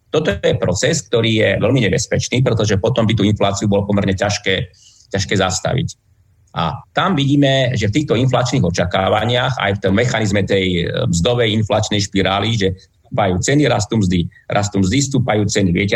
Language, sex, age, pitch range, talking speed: Slovak, male, 30-49, 95-120 Hz, 160 wpm